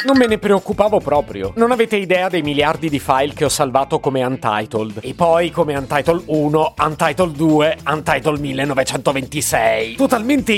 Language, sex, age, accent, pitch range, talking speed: Italian, male, 30-49, native, 135-195 Hz, 155 wpm